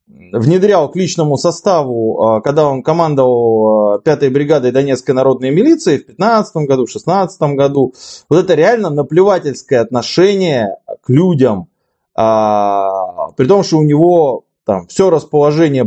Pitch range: 135-185 Hz